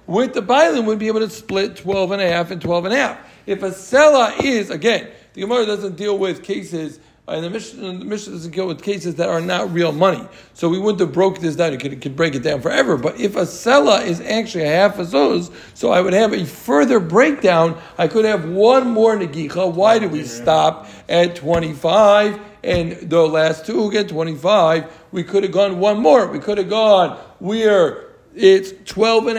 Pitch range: 170-210 Hz